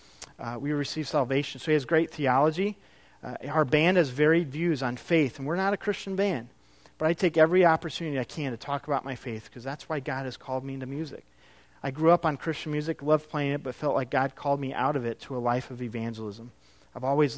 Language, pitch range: English, 115-150 Hz